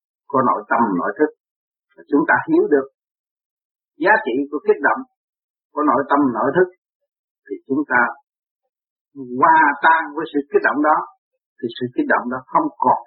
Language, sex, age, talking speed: Vietnamese, male, 50-69, 165 wpm